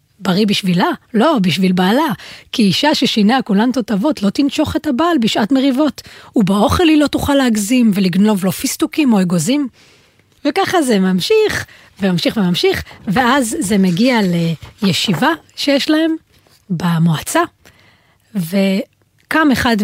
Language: Hebrew